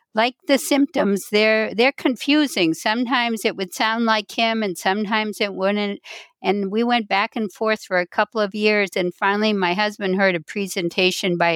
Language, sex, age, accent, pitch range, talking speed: English, female, 60-79, American, 170-210 Hz, 180 wpm